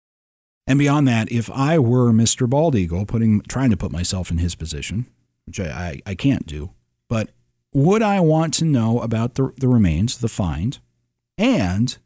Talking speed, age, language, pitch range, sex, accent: 180 wpm, 40-59, English, 90-135 Hz, male, American